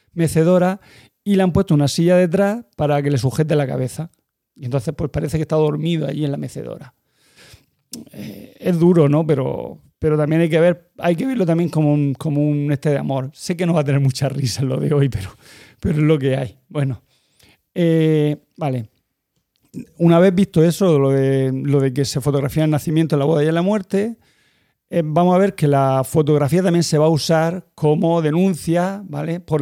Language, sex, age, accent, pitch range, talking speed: Spanish, male, 40-59, Spanish, 145-170 Hz, 200 wpm